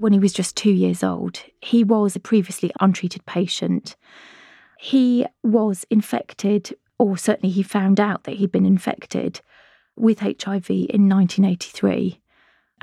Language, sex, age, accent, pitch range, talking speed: English, female, 30-49, British, 185-210 Hz, 135 wpm